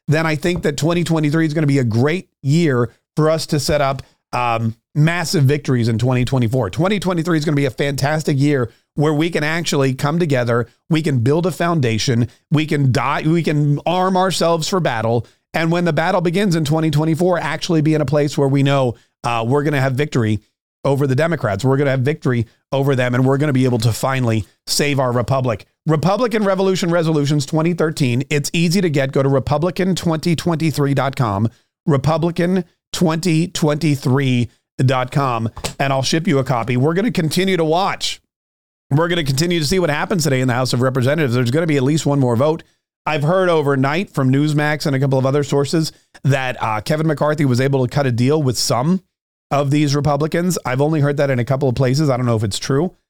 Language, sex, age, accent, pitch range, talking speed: English, male, 40-59, American, 130-165 Hz, 205 wpm